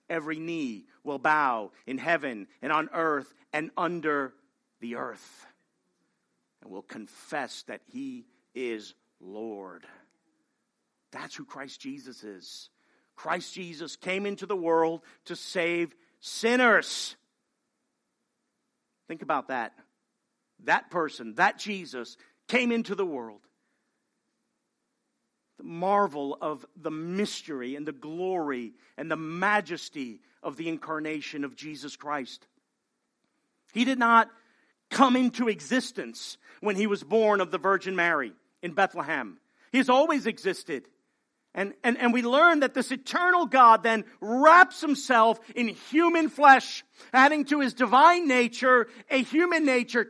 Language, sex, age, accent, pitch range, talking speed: English, male, 50-69, American, 165-260 Hz, 125 wpm